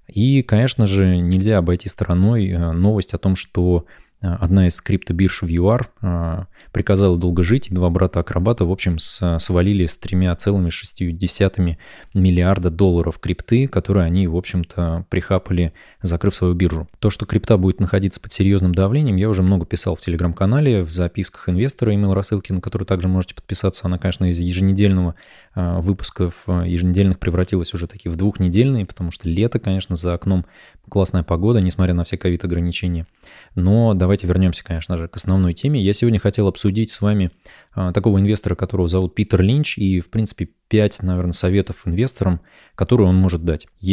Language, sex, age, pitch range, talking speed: Russian, male, 20-39, 90-105 Hz, 165 wpm